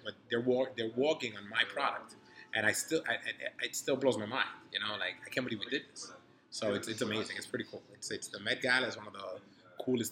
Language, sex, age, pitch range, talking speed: English, male, 20-39, 105-120 Hz, 260 wpm